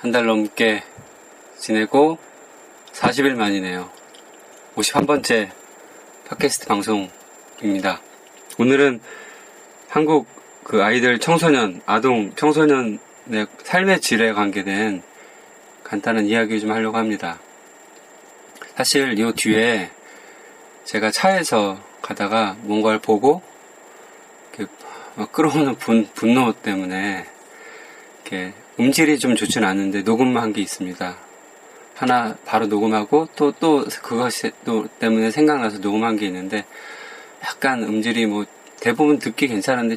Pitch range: 105-135 Hz